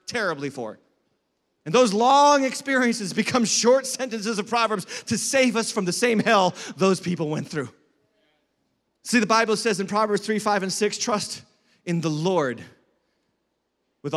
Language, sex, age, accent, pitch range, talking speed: English, male, 30-49, American, 195-260 Hz, 155 wpm